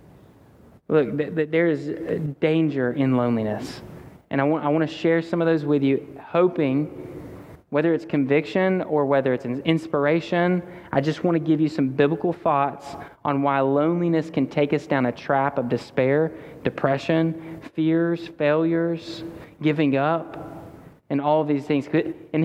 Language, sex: English, male